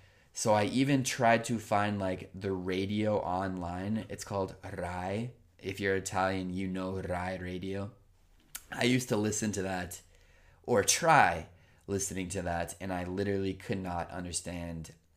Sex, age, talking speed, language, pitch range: male, 20-39, 145 wpm, Italian, 85-105 Hz